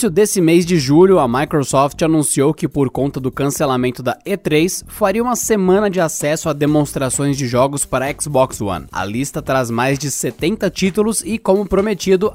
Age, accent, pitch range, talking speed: 20-39, Brazilian, 130-175 Hz, 180 wpm